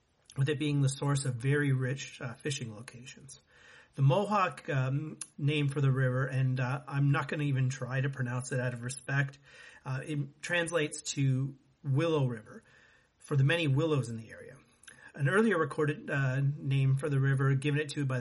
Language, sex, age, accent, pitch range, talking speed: English, male, 40-59, American, 130-150 Hz, 190 wpm